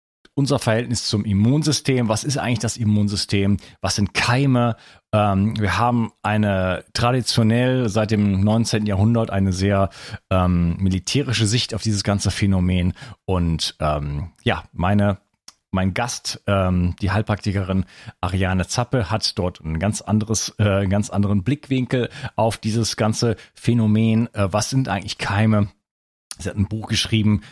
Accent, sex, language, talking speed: German, male, German, 140 wpm